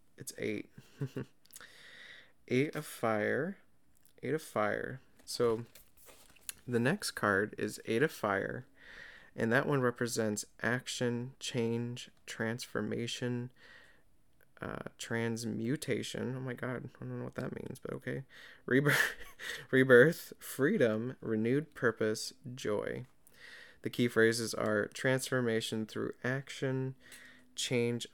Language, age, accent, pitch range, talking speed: English, 20-39, American, 110-125 Hz, 105 wpm